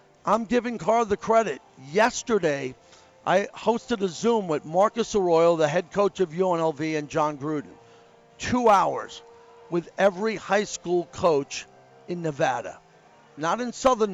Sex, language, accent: male, English, American